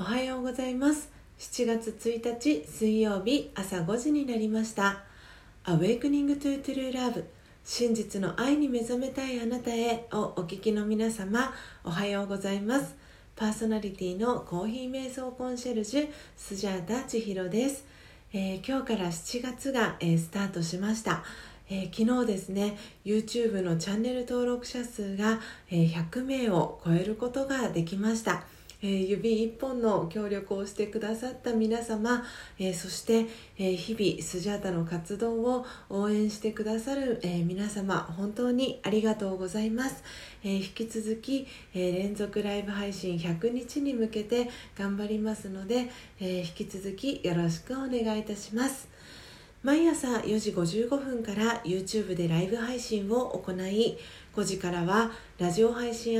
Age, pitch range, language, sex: 40-59, 195-245 Hz, Japanese, female